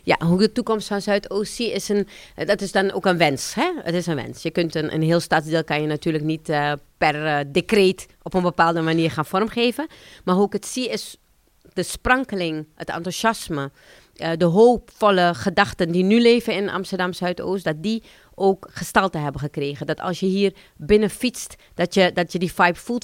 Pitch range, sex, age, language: 165-200 Hz, female, 30-49, Dutch